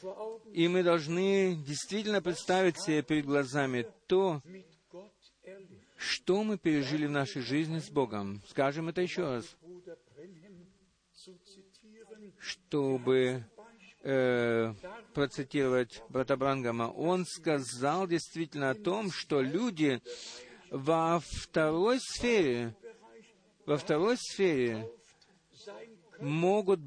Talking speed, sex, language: 90 wpm, male, Russian